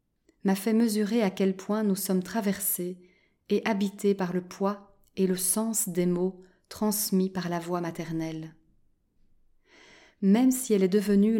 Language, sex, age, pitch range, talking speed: French, female, 30-49, 185-215 Hz, 155 wpm